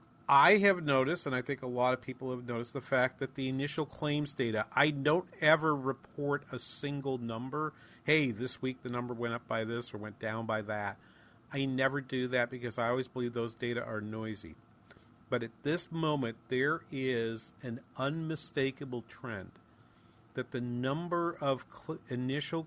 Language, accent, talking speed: English, American, 175 wpm